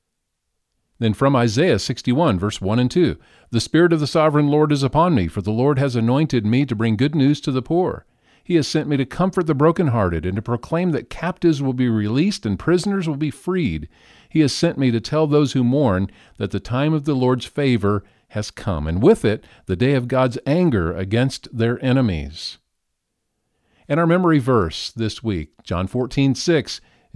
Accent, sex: American, male